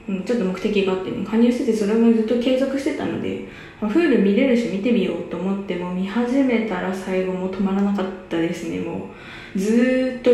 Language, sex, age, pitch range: Japanese, female, 20-39, 185-230 Hz